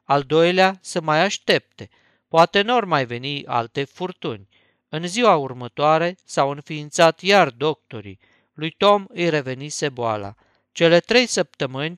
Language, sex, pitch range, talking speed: Romanian, male, 135-175 Hz, 130 wpm